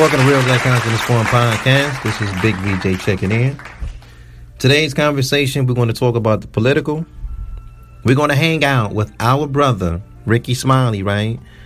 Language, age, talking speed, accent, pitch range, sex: English, 40-59, 170 wpm, American, 100-135 Hz, male